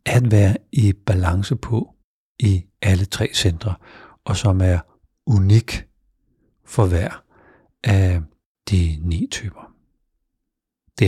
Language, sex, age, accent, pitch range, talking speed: Danish, male, 60-79, native, 90-105 Hz, 110 wpm